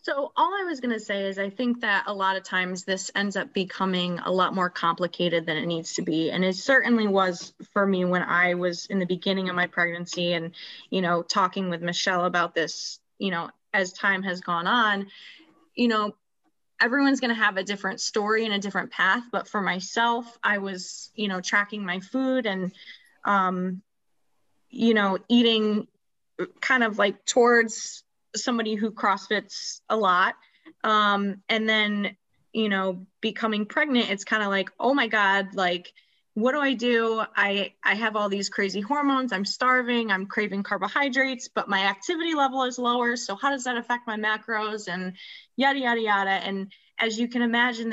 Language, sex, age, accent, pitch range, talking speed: English, female, 20-39, American, 190-235 Hz, 185 wpm